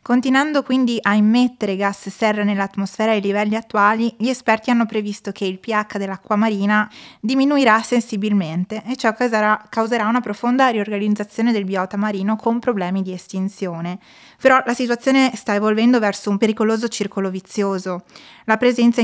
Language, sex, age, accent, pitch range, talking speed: Italian, female, 20-39, native, 195-235 Hz, 145 wpm